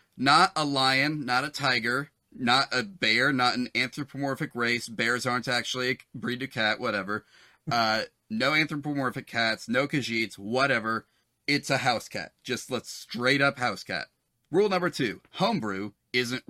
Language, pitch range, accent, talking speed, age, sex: English, 115-145 Hz, American, 155 wpm, 30-49, male